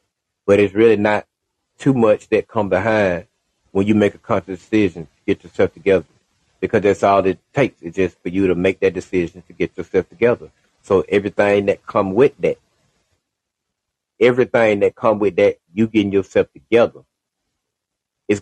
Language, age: English, 30-49